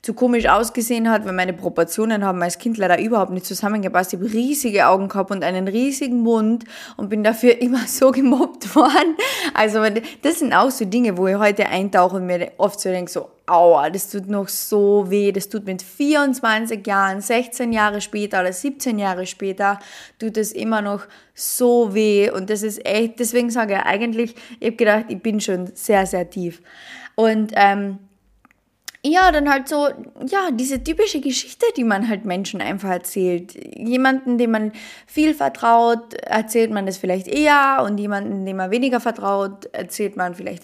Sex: female